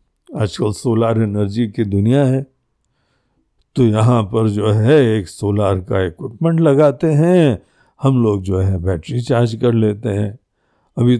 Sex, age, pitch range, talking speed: male, 60-79, 105-135 Hz, 145 wpm